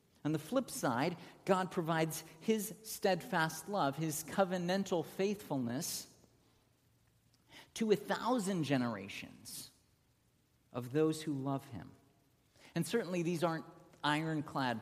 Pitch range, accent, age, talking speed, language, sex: 115-170 Hz, American, 50-69, 105 wpm, English, male